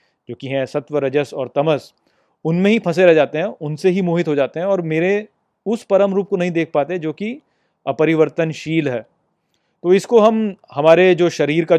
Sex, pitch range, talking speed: male, 130-165 Hz, 200 wpm